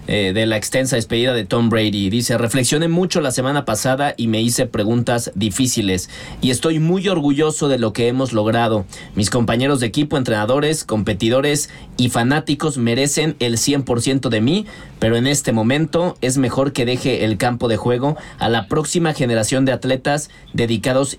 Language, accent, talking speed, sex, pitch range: Spanish, Mexican, 165 wpm, male, 115-145 Hz